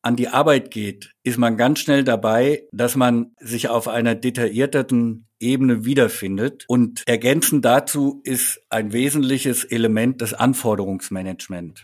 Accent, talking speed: German, 130 wpm